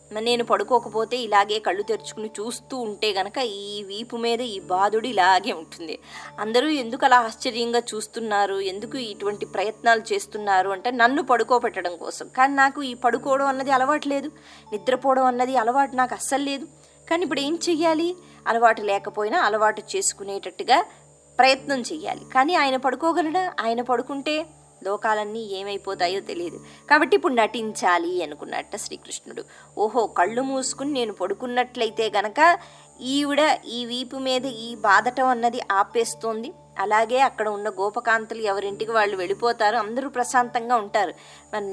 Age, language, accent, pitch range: 20-39, Telugu, native, 205-265 Hz